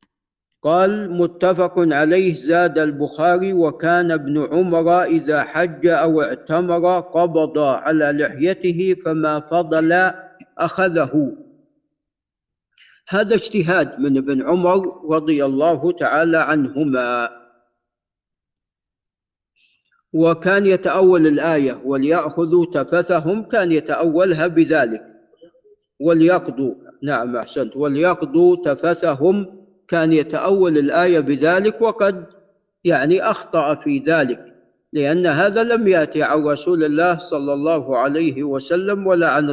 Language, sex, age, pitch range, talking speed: Arabic, male, 50-69, 150-185 Hz, 95 wpm